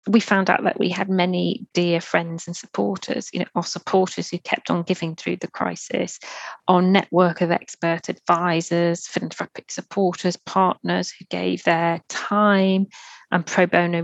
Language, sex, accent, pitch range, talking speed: English, female, British, 175-200 Hz, 160 wpm